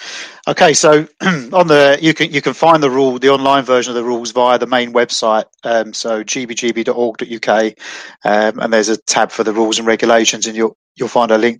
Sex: male